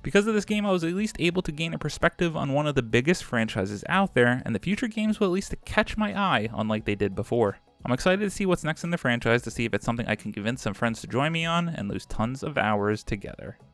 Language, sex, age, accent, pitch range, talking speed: English, male, 30-49, American, 110-175 Hz, 285 wpm